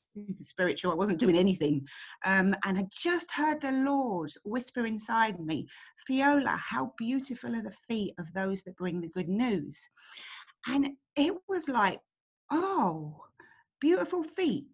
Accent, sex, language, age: British, female, English, 40-59